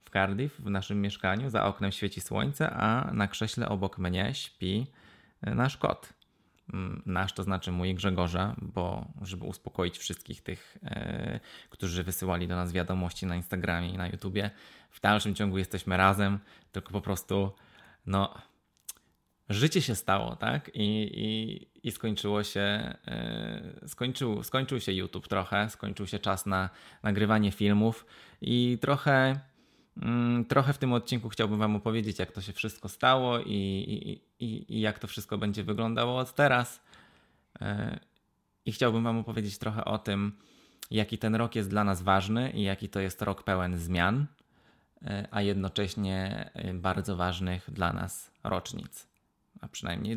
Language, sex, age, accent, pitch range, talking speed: Polish, male, 20-39, native, 95-115 Hz, 145 wpm